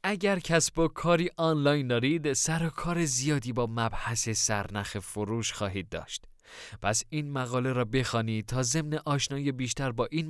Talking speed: 155 wpm